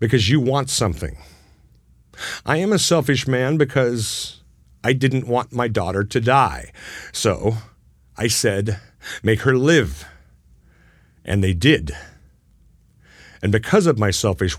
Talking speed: 130 wpm